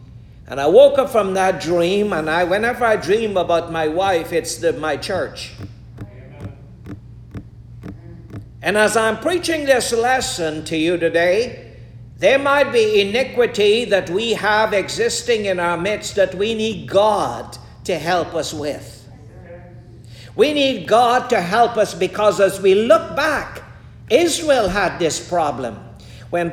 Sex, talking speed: male, 140 wpm